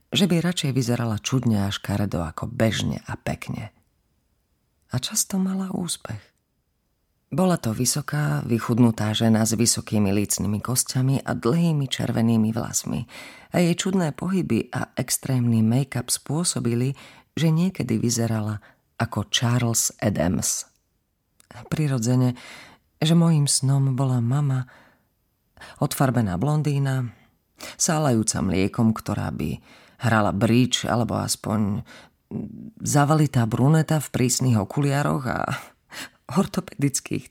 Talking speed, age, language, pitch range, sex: 105 wpm, 40-59, Slovak, 110-140 Hz, female